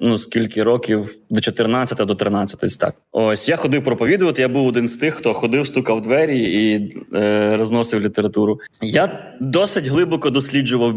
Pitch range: 120-170 Hz